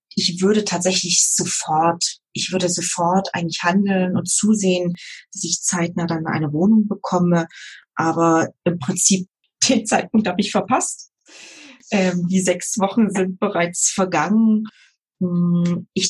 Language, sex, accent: German, female, German